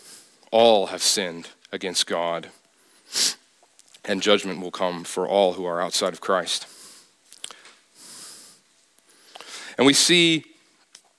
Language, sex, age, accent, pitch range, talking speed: English, male, 30-49, American, 105-140 Hz, 100 wpm